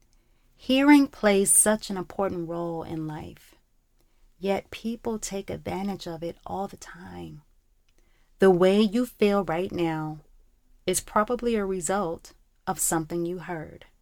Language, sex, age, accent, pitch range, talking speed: English, female, 30-49, American, 150-195 Hz, 135 wpm